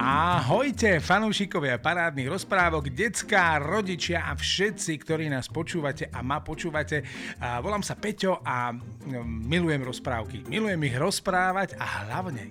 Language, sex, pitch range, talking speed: Slovak, male, 125-180 Hz, 120 wpm